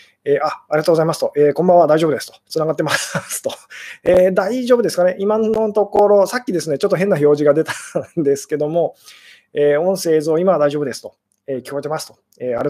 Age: 20-39